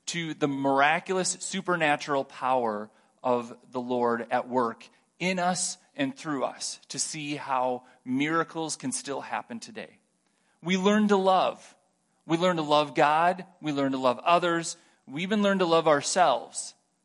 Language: English